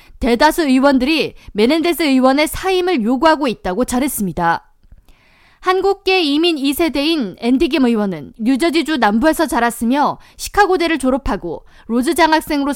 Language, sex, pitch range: Korean, female, 240-330 Hz